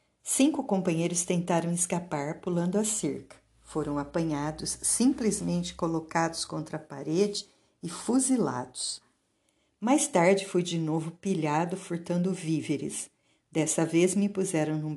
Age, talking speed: 50-69, 115 wpm